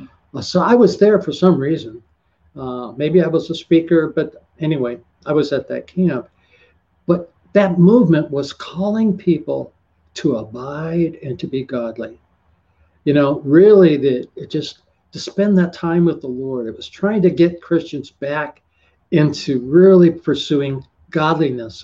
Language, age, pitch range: English, 60-79, 120-170 Hz